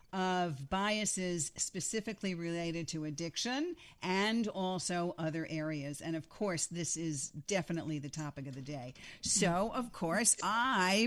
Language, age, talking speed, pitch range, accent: English, 50-69, 135 wpm, 165-205 Hz, American